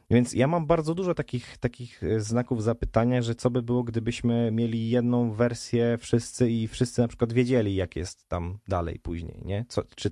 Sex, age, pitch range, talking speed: male, 20-39, 100-120 Hz, 185 wpm